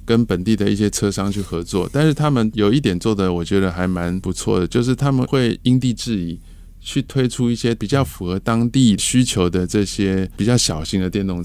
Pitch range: 90-120 Hz